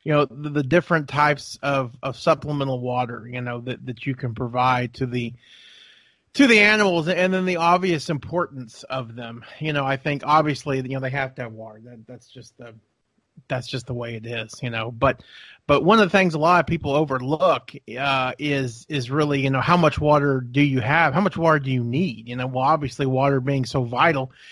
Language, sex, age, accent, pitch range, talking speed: English, male, 30-49, American, 130-165 Hz, 220 wpm